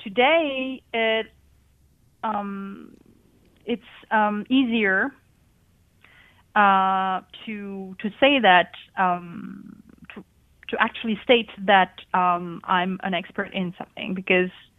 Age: 30-49